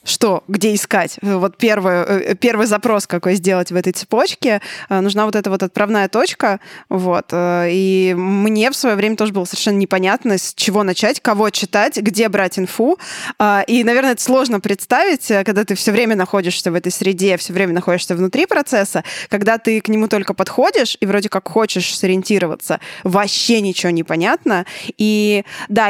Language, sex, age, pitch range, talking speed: Russian, female, 20-39, 190-225 Hz, 165 wpm